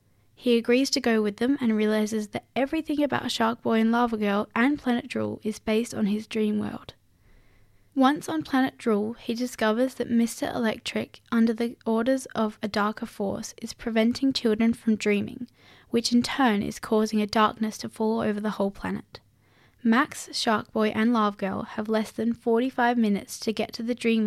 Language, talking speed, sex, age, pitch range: English, 185 wpm, female, 10-29, 210-240 Hz